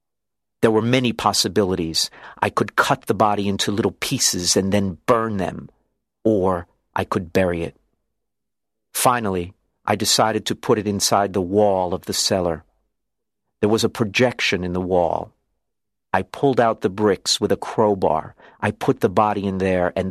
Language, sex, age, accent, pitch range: Chinese, male, 50-69, American, 90-110 Hz